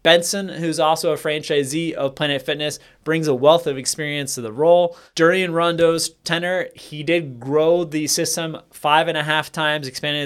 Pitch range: 140-165 Hz